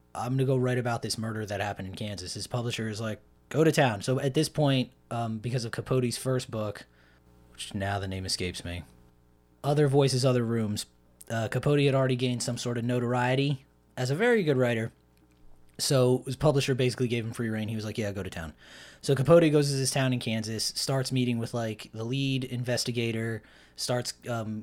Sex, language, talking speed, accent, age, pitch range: male, English, 205 wpm, American, 20-39, 105-130 Hz